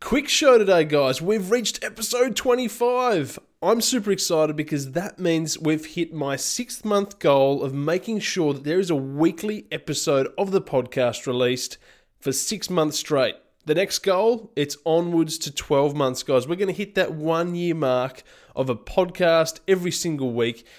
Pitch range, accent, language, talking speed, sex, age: 135-190 Hz, Australian, English, 170 wpm, male, 20-39